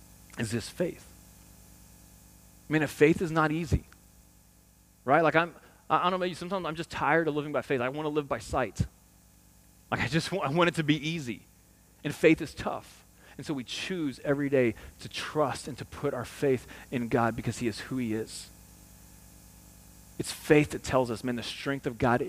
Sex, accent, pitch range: male, American, 95-155 Hz